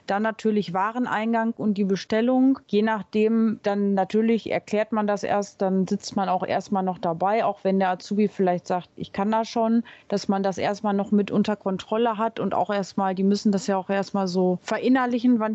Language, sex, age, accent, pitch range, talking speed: German, female, 30-49, German, 200-225 Hz, 200 wpm